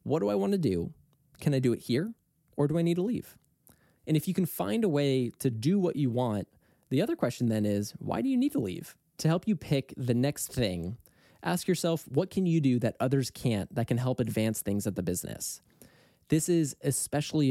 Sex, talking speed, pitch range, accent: male, 230 wpm, 110-155 Hz, American